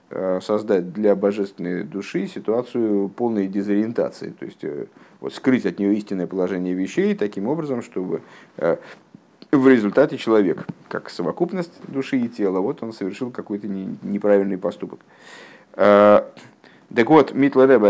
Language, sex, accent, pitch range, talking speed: Russian, male, native, 105-160 Hz, 135 wpm